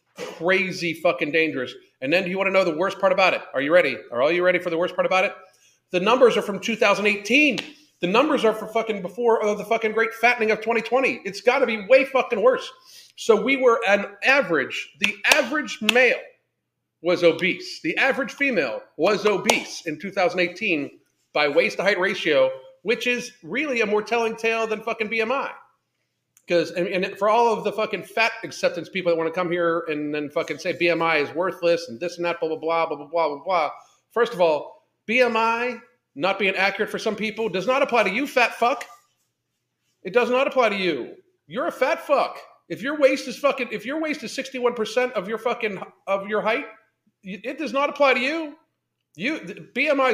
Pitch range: 185-260 Hz